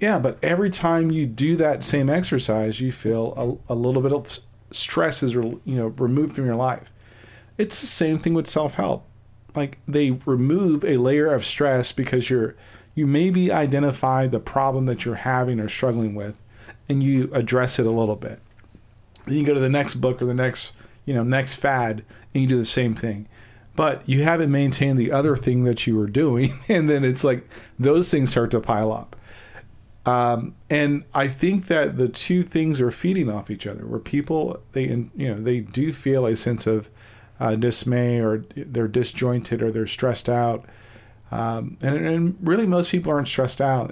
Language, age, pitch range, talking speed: English, 40-59, 115-140 Hz, 190 wpm